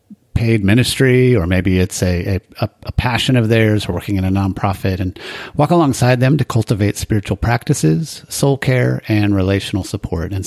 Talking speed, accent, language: 170 wpm, American, English